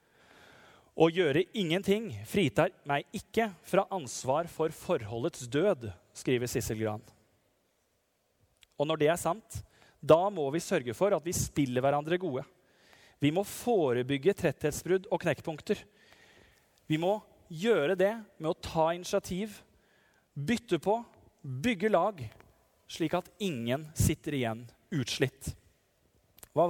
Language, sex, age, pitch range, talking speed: English, male, 30-49, 135-195 Hz, 120 wpm